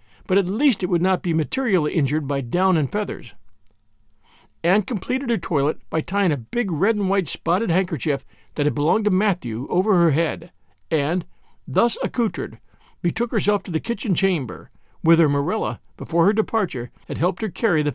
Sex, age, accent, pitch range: male, 60-79, American, 140-205 Hz